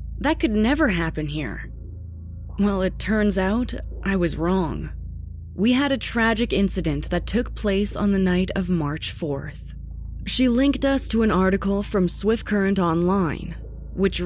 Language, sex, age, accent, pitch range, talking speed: English, female, 20-39, American, 160-215 Hz, 155 wpm